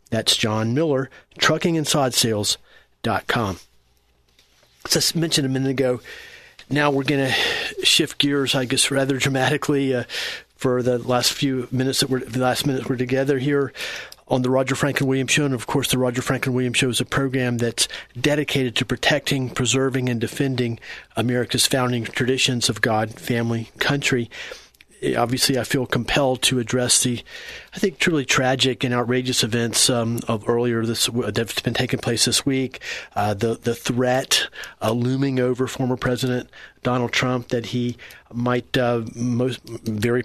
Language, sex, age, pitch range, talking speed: English, male, 40-59, 120-135 Hz, 160 wpm